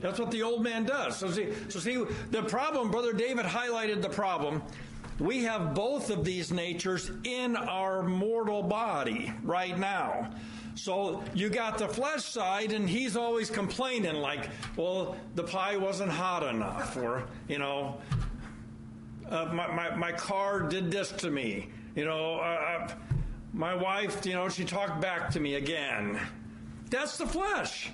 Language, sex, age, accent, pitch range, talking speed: English, male, 50-69, American, 185-245 Hz, 160 wpm